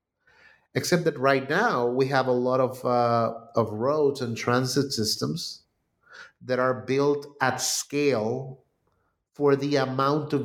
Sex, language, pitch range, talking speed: male, English, 115-145 Hz, 140 wpm